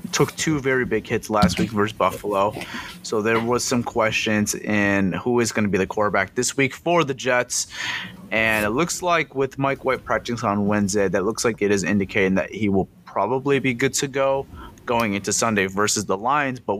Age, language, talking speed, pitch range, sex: 30-49, English, 205 wpm, 100-135 Hz, male